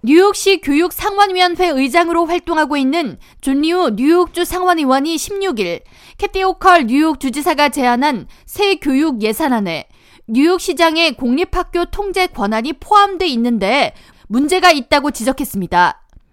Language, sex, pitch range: Korean, female, 260-360 Hz